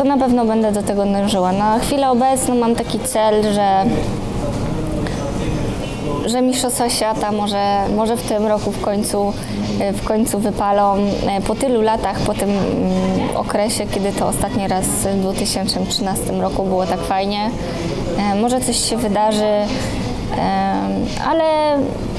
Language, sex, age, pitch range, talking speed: Polish, female, 20-39, 190-215 Hz, 125 wpm